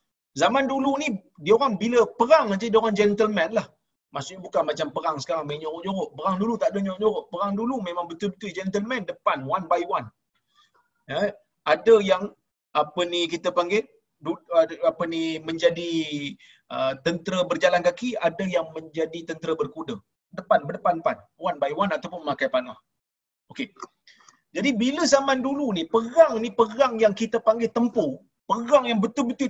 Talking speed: 155 wpm